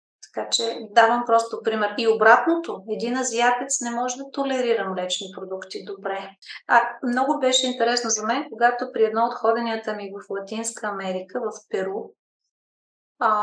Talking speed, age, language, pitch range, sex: 150 wpm, 30-49, Bulgarian, 205-235 Hz, female